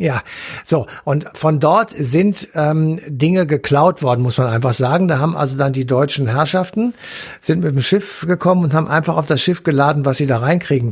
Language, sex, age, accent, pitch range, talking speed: German, male, 60-79, German, 130-165 Hz, 205 wpm